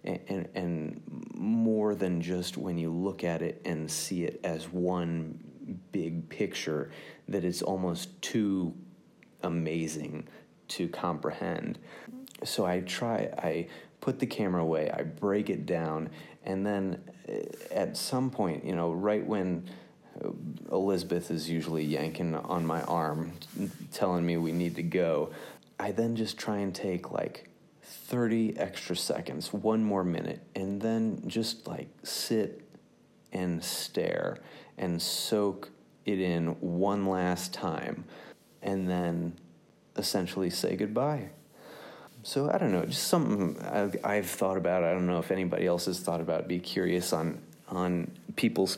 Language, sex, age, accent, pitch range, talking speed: English, male, 30-49, American, 85-100 Hz, 140 wpm